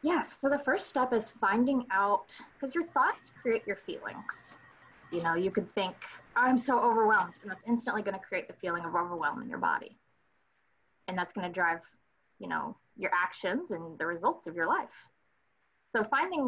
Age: 20-39